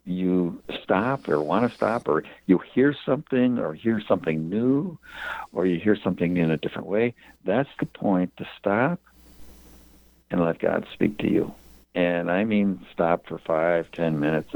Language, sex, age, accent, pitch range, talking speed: English, male, 60-79, American, 75-105 Hz, 170 wpm